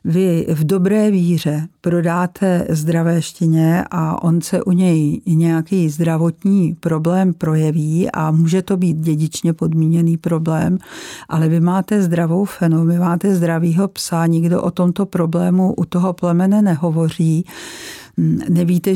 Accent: native